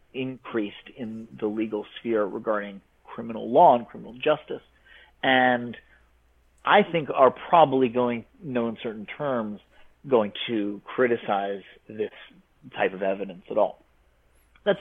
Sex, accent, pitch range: male, American, 105-135 Hz